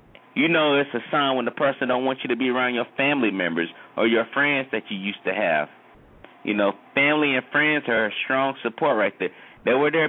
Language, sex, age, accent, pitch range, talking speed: English, male, 30-49, American, 120-145 Hz, 230 wpm